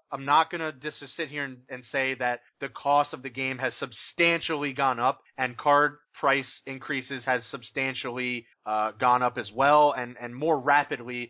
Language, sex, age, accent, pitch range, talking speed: English, male, 30-49, American, 135-155 Hz, 185 wpm